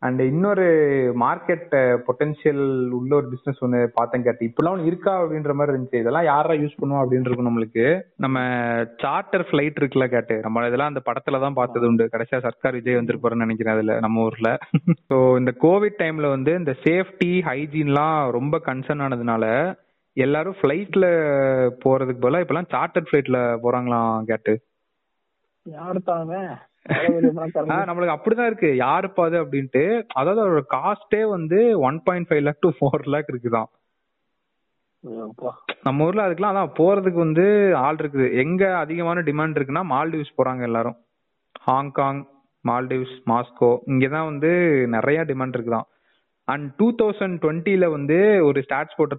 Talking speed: 85 wpm